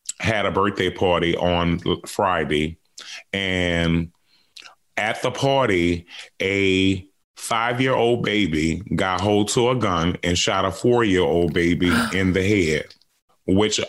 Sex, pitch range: male, 90-110 Hz